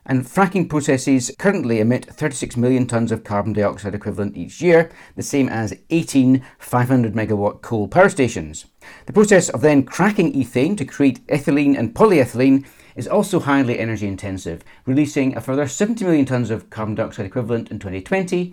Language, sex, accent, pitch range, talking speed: English, male, British, 110-150 Hz, 160 wpm